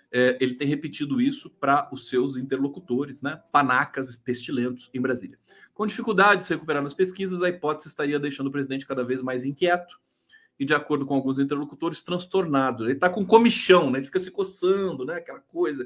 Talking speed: 195 wpm